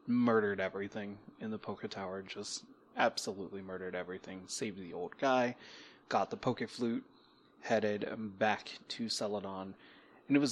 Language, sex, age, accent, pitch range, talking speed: English, male, 20-39, American, 100-120 Hz, 145 wpm